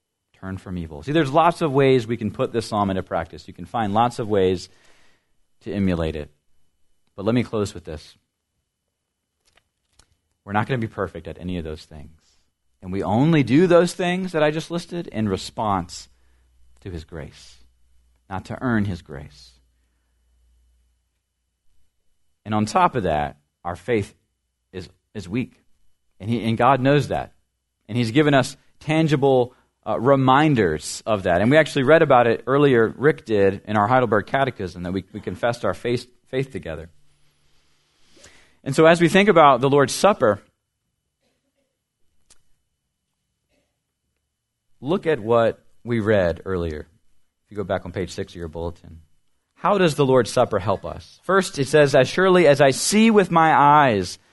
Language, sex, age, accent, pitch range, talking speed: English, male, 40-59, American, 80-135 Hz, 165 wpm